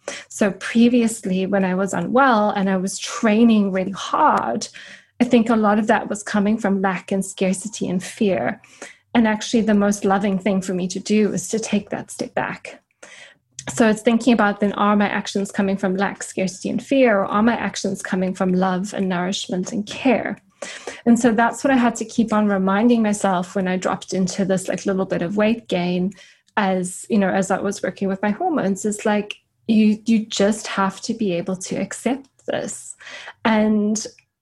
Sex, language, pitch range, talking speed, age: female, English, 190-225 Hz, 195 wpm, 20-39